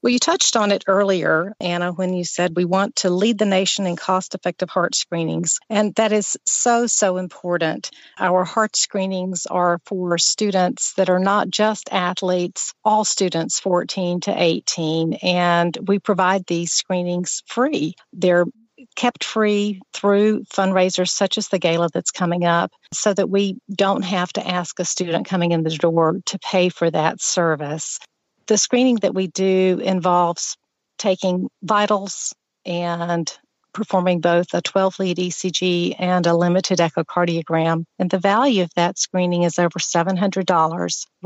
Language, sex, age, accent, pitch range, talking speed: English, female, 50-69, American, 175-195 Hz, 155 wpm